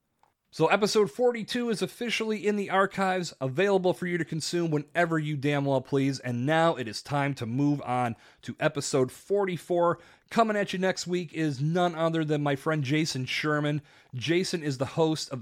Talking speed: 185 wpm